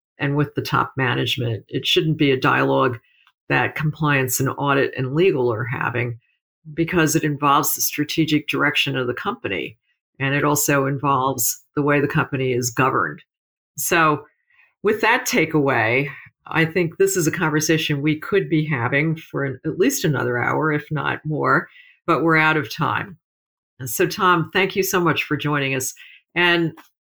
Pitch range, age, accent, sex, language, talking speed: 135-160 Hz, 50-69, American, female, English, 170 wpm